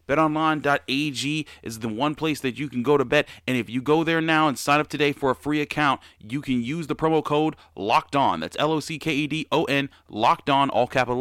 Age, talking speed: 30-49, 200 wpm